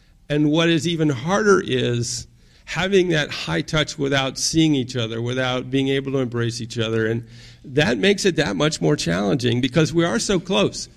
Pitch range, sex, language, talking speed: 125-160 Hz, male, English, 185 wpm